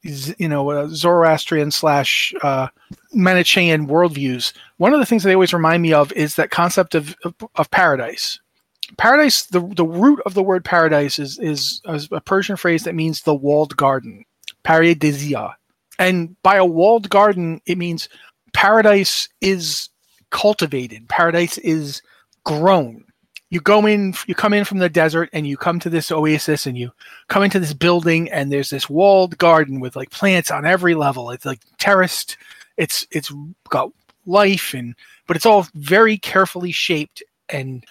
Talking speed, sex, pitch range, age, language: 165 wpm, male, 155-200 Hz, 40-59, English